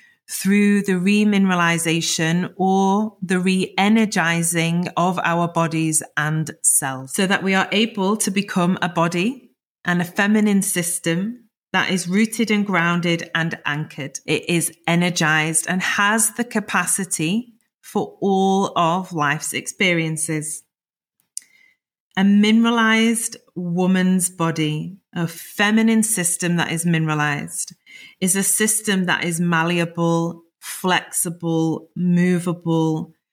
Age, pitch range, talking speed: 30-49, 165-200 Hz, 110 wpm